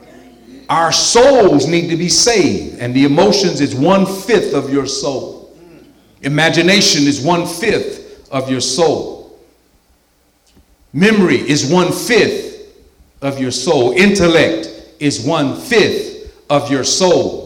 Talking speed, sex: 110 wpm, male